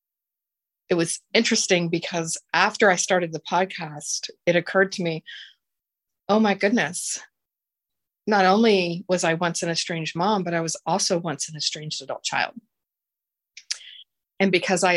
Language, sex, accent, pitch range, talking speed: English, female, American, 160-200 Hz, 145 wpm